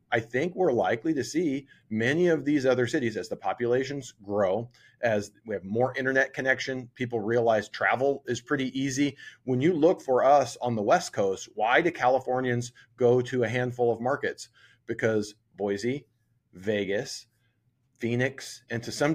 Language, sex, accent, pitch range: English, male, American, 115-135 Hz